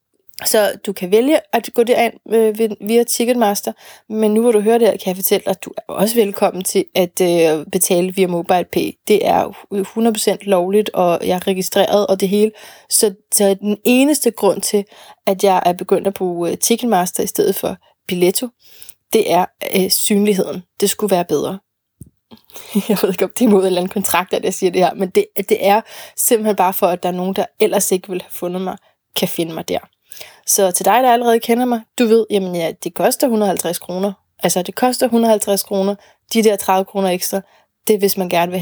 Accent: native